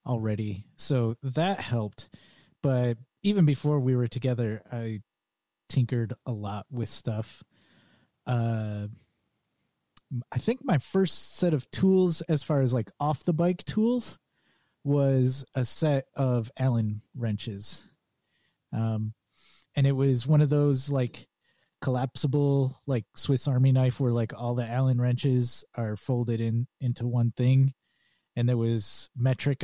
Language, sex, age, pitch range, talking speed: English, male, 20-39, 115-145 Hz, 135 wpm